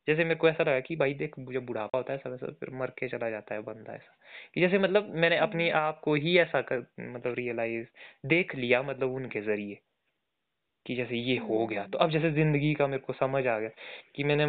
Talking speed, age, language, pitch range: 220 wpm, 20-39, Hindi, 130-165 Hz